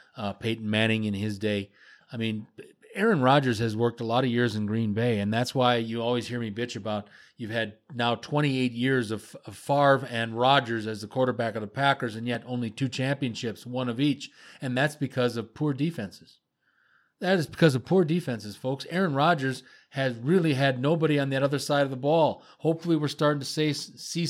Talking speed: 205 wpm